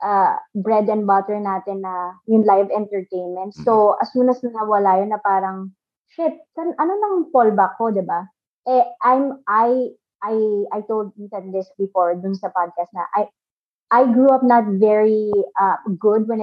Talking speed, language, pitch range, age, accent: 175 wpm, English, 195-240 Hz, 20-39, Filipino